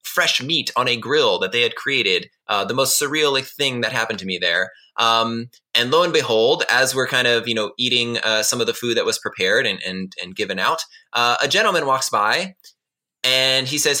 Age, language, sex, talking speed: 20-39, English, male, 220 wpm